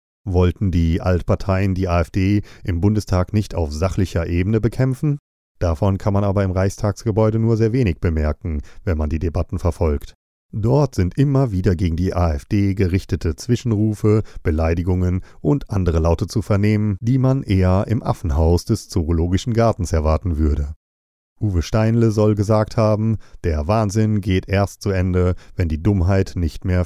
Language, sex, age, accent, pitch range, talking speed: German, male, 40-59, German, 85-110 Hz, 150 wpm